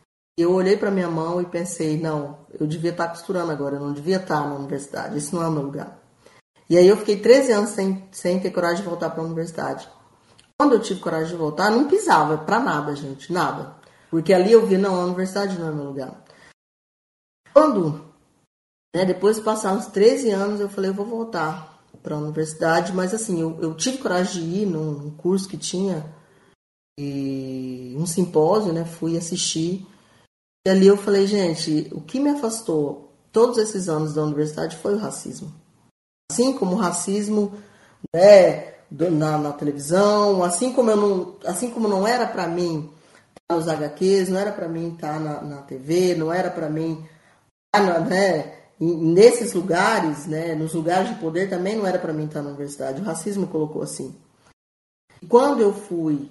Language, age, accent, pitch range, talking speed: Portuguese, 20-39, Brazilian, 155-195 Hz, 190 wpm